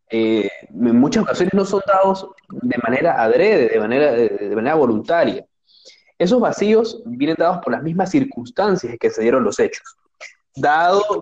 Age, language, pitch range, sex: 20-39, Spanish, 145-230 Hz, male